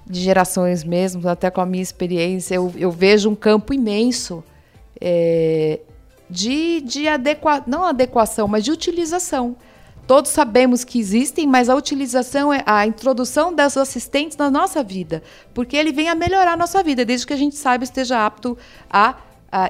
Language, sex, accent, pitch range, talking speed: Portuguese, female, Brazilian, 210-285 Hz, 165 wpm